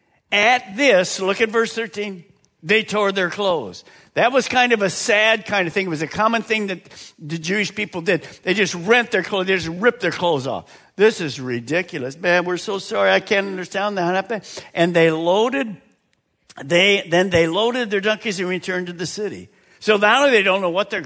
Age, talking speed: 50-69, 210 wpm